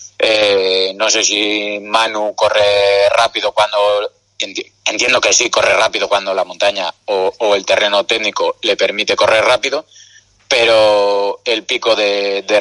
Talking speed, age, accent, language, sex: 145 wpm, 30-49, Spanish, Spanish, male